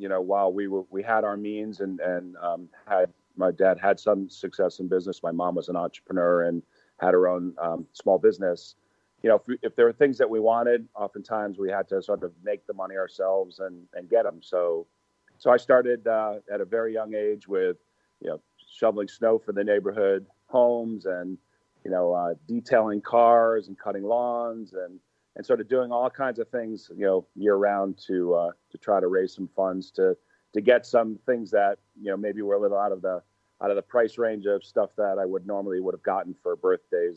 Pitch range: 95-125 Hz